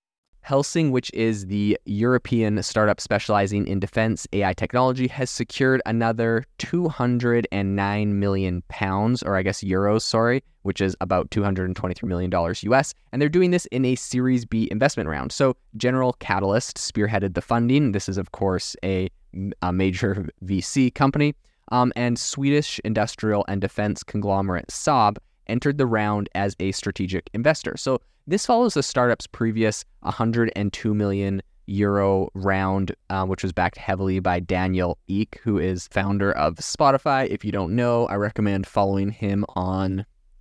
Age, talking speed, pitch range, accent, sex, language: 20-39, 150 wpm, 95-125 Hz, American, male, English